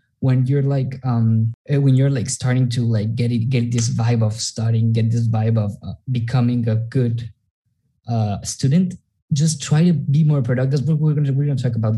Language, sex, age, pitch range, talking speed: English, male, 20-39, 115-135 Hz, 195 wpm